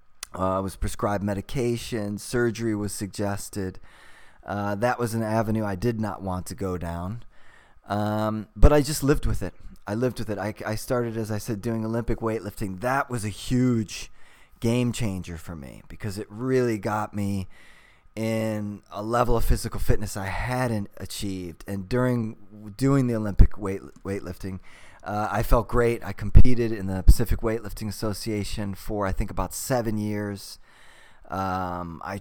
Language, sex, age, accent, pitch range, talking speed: English, male, 20-39, American, 95-115 Hz, 160 wpm